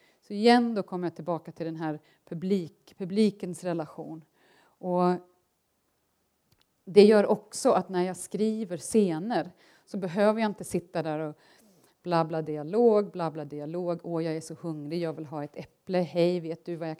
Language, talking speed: Swedish, 165 wpm